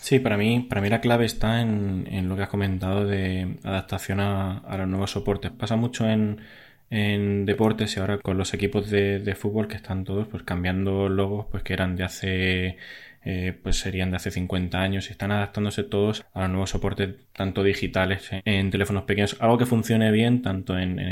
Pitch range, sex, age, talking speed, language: 95-110 Hz, male, 20-39, 205 wpm, Spanish